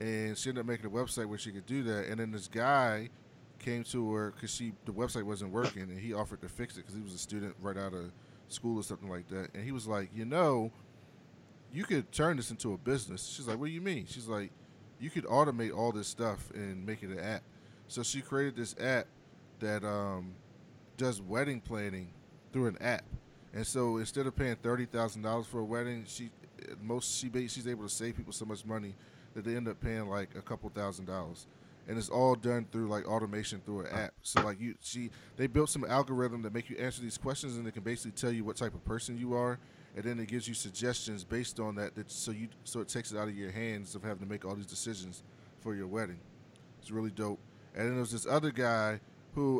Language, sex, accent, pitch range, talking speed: English, male, American, 105-125 Hz, 235 wpm